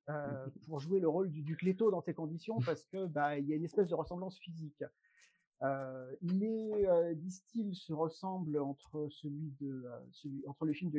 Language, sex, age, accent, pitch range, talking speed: French, male, 50-69, French, 150-195 Hz, 195 wpm